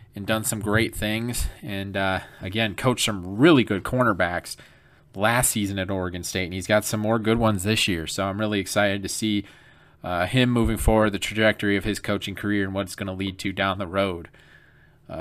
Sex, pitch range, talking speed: male, 95-120 Hz, 215 wpm